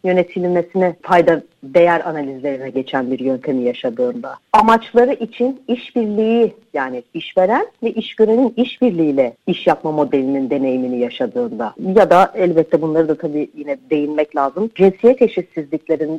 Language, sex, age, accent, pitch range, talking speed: Turkish, female, 40-59, native, 140-220 Hz, 120 wpm